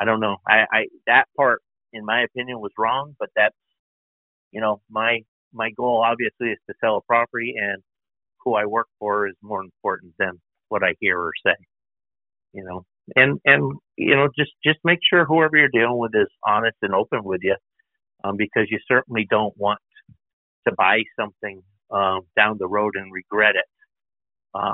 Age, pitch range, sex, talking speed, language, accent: 50-69, 115-155 Hz, male, 185 wpm, English, American